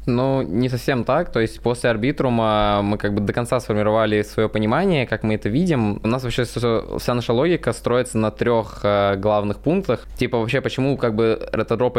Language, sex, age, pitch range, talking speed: Russian, male, 20-39, 110-120 Hz, 185 wpm